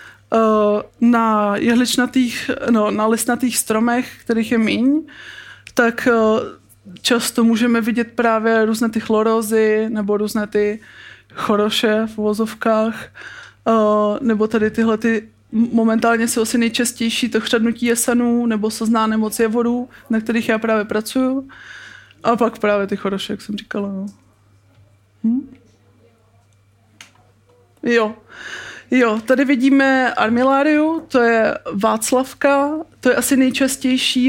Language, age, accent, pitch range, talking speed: Czech, 20-39, native, 210-245 Hz, 120 wpm